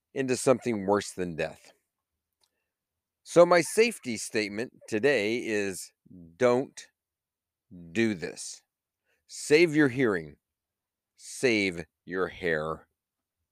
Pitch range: 95-145 Hz